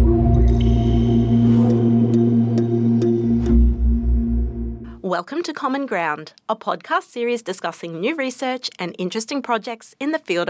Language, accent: English, Australian